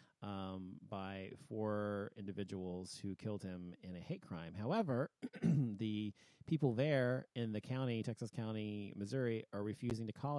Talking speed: 145 wpm